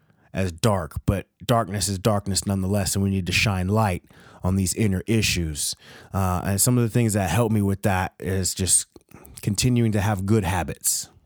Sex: male